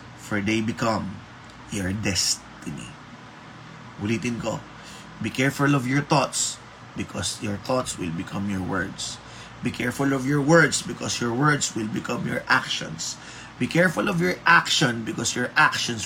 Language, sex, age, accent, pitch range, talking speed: Filipino, male, 20-39, native, 110-145 Hz, 155 wpm